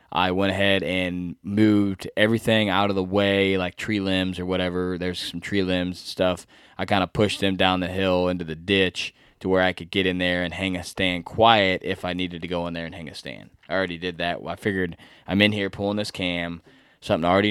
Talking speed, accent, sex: 235 wpm, American, male